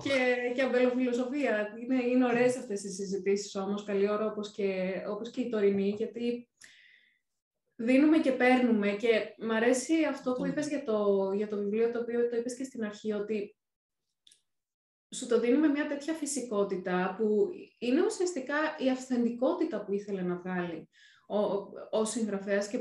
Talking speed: 160 wpm